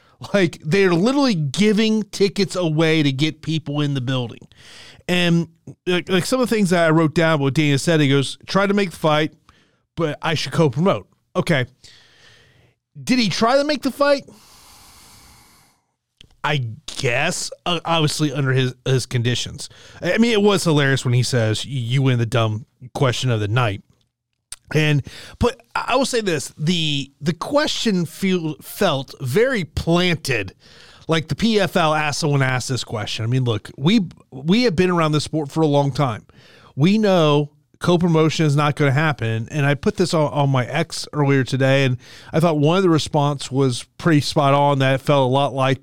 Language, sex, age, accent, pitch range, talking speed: English, male, 30-49, American, 130-170 Hz, 180 wpm